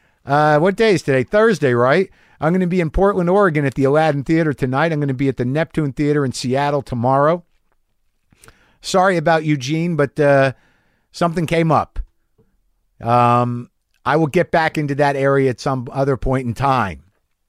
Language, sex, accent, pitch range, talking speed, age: English, male, American, 135-190 Hz, 180 wpm, 50-69